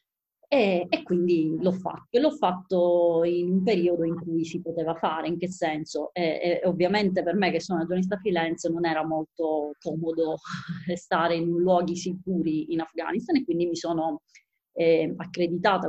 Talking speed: 165 wpm